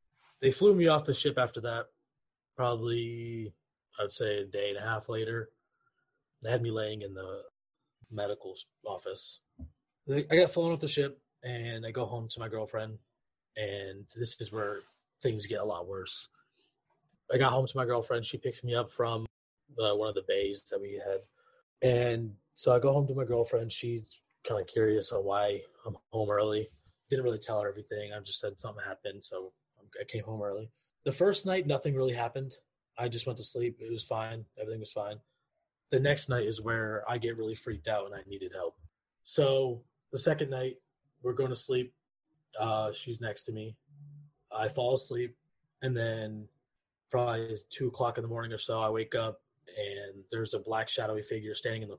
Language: English